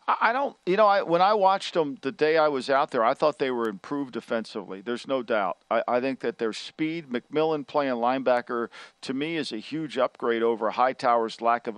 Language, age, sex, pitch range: English, 50-69, male, 115-135 Hz